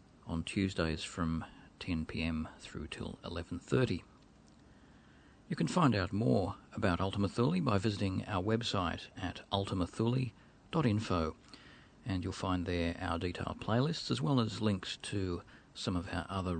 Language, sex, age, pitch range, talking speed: English, male, 40-59, 85-110 Hz, 135 wpm